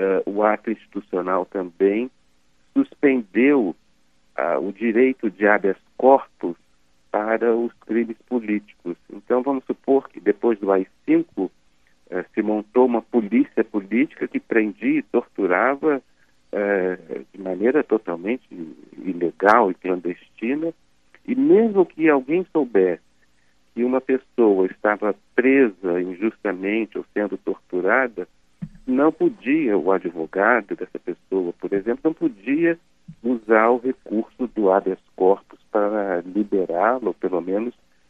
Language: Portuguese